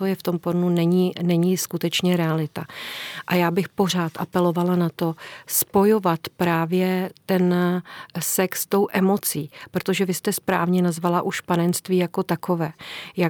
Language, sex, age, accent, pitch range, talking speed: Czech, female, 40-59, native, 170-185 Hz, 145 wpm